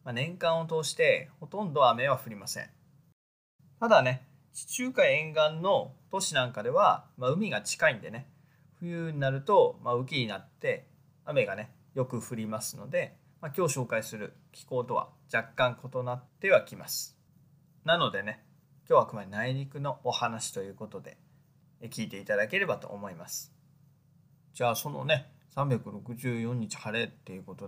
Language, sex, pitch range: Japanese, male, 125-165 Hz